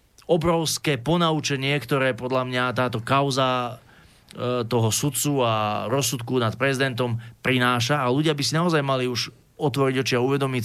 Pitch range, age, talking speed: 115-140 Hz, 30-49, 140 wpm